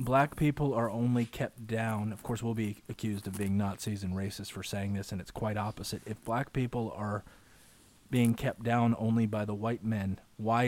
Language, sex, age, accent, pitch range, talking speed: English, male, 30-49, American, 105-120 Hz, 200 wpm